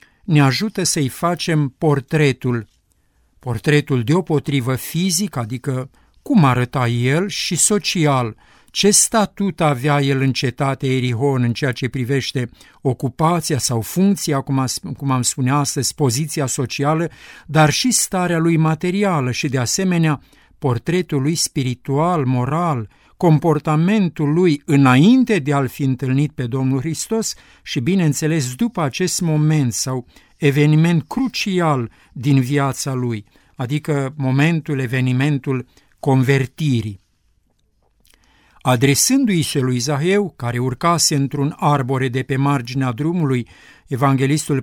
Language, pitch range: Romanian, 130-160 Hz